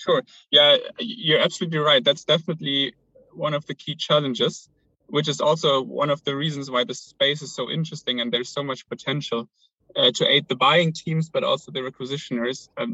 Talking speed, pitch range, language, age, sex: 190 wpm, 125-160 Hz, English, 20-39, male